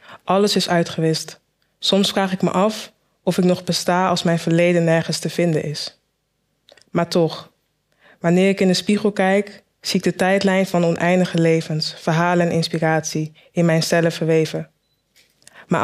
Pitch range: 165-185 Hz